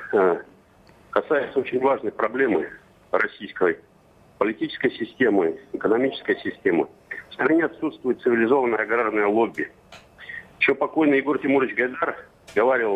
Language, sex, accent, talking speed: Russian, male, native, 100 wpm